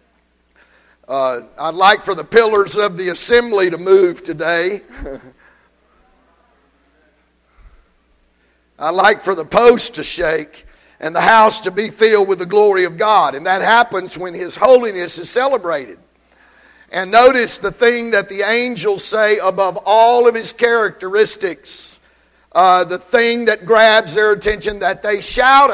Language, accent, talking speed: English, American, 140 wpm